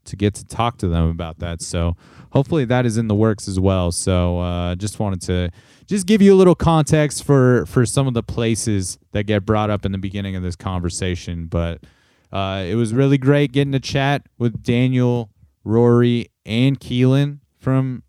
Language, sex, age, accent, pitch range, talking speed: English, male, 30-49, American, 100-130 Hz, 195 wpm